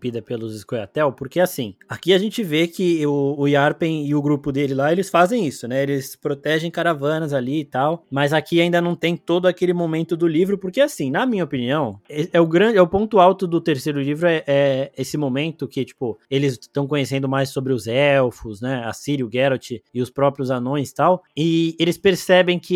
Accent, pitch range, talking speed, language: Brazilian, 145-185 Hz, 215 wpm, Portuguese